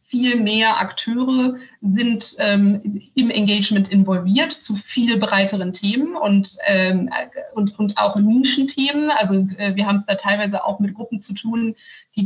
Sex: female